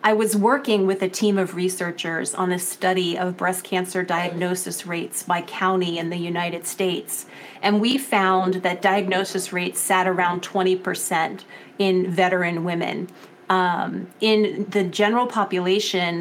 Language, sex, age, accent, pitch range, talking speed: English, female, 30-49, American, 180-200 Hz, 145 wpm